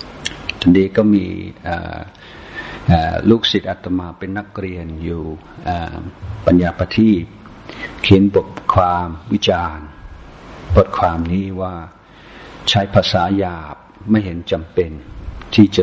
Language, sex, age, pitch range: Thai, male, 60-79, 90-105 Hz